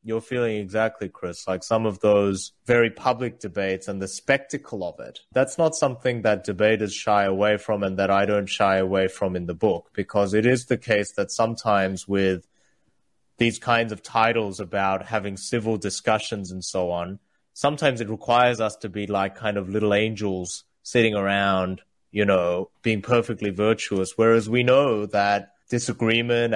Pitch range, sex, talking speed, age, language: 100-115 Hz, male, 170 wpm, 20-39, English